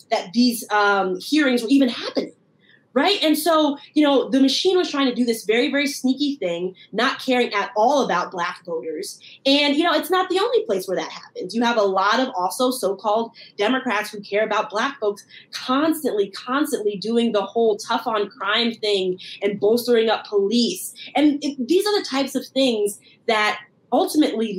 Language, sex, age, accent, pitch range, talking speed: English, female, 20-39, American, 205-275 Hz, 185 wpm